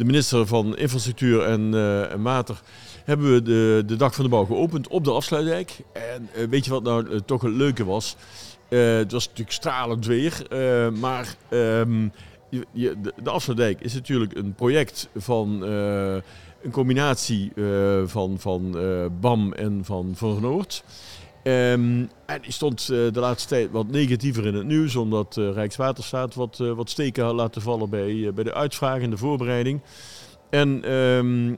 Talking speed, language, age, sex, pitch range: 175 wpm, Dutch, 50-69, male, 105-125 Hz